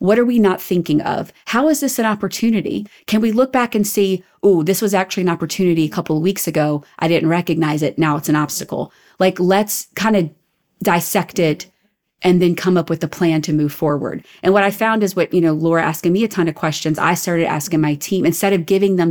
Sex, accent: female, American